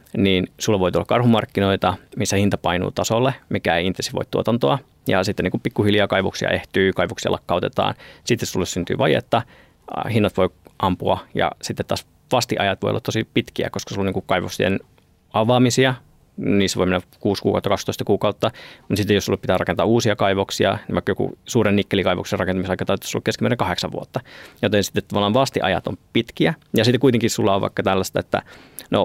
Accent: native